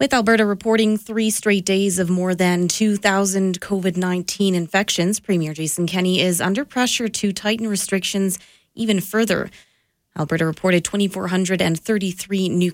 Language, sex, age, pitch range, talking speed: English, female, 30-49, 170-200 Hz, 125 wpm